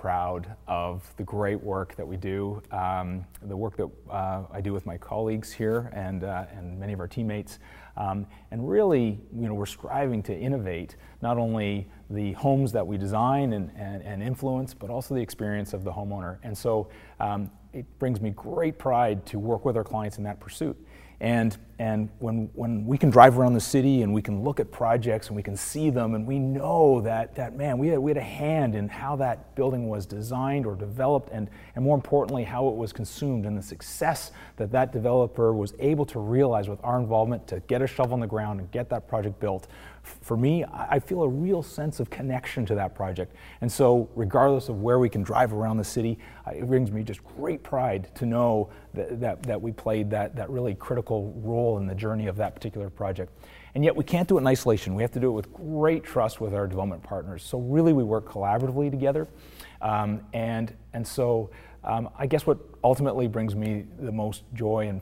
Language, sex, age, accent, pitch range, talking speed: English, male, 30-49, American, 100-125 Hz, 215 wpm